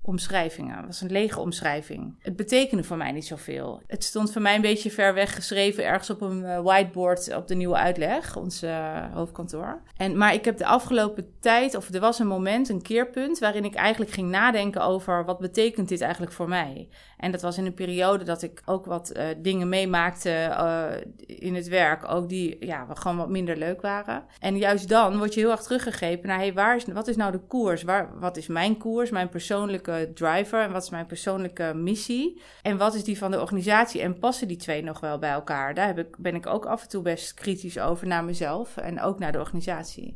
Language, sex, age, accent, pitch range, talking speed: Dutch, female, 30-49, Dutch, 175-210 Hz, 220 wpm